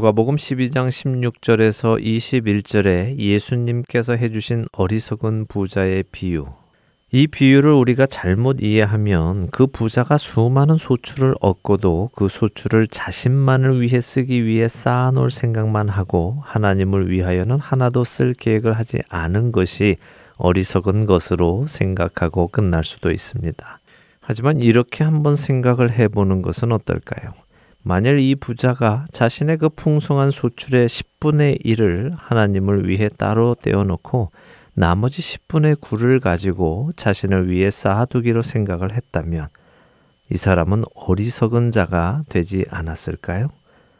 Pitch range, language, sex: 95-125 Hz, Korean, male